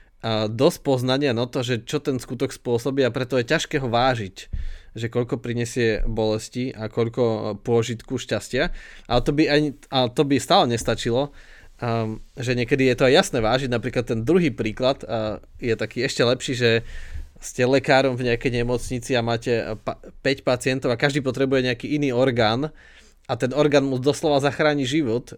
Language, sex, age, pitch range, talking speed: Slovak, male, 20-39, 115-135 Hz, 165 wpm